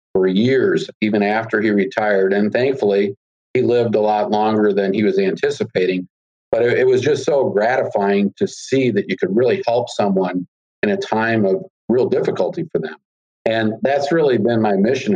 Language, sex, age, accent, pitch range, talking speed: English, male, 50-69, American, 95-115 Hz, 180 wpm